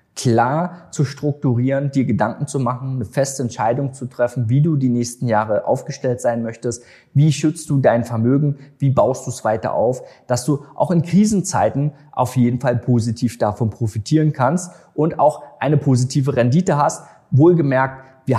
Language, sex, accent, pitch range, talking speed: German, male, German, 120-145 Hz, 165 wpm